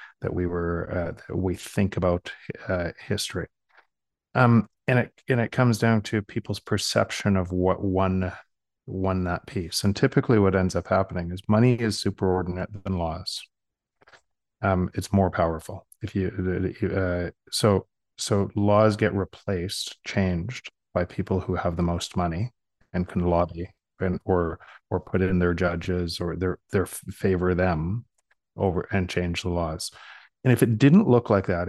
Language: English